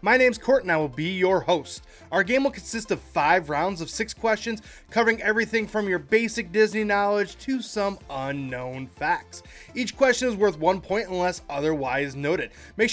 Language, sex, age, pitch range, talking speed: English, male, 20-39, 160-225 Hz, 185 wpm